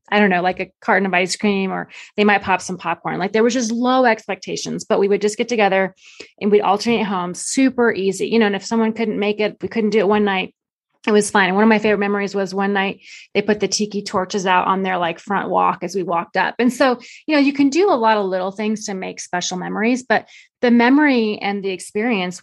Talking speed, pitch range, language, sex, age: 260 wpm, 190-225 Hz, English, female, 30-49